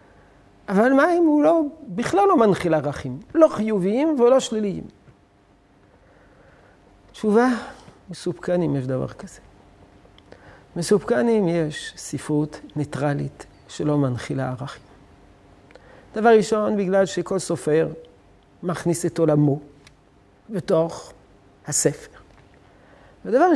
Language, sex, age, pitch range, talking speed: Hebrew, male, 50-69, 130-200 Hz, 95 wpm